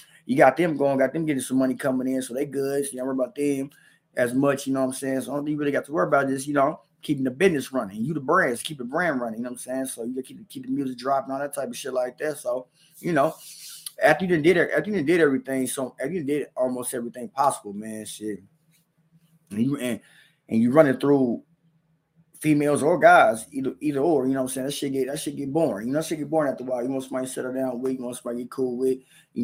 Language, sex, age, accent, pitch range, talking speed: English, male, 20-39, American, 125-150 Hz, 275 wpm